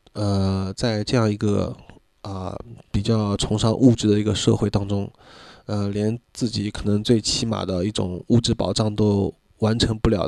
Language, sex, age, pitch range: Chinese, male, 20-39, 100-115 Hz